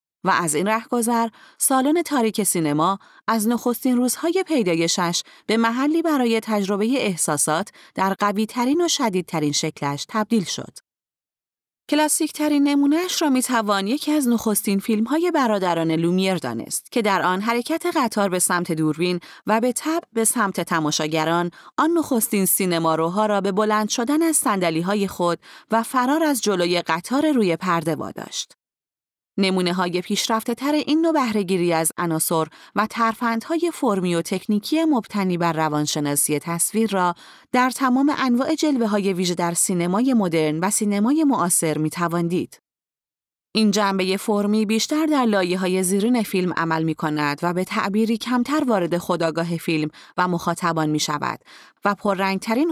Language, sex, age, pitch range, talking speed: Persian, female, 30-49, 170-245 Hz, 145 wpm